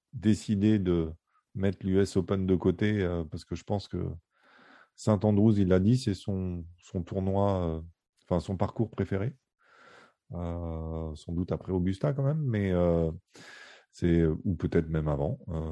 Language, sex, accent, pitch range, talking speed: French, male, French, 90-125 Hz, 155 wpm